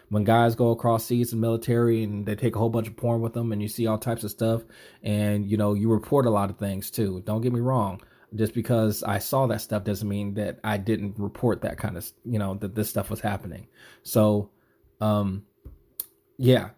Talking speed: 230 wpm